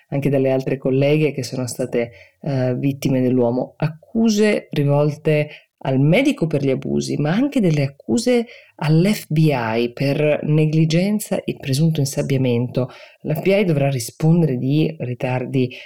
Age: 20-39